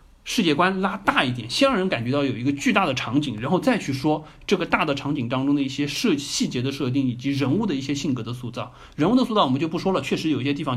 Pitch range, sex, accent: 130-175 Hz, male, native